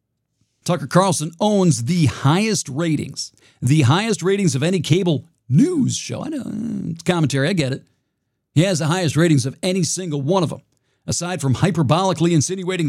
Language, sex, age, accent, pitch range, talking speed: English, male, 50-69, American, 130-175 Hz, 170 wpm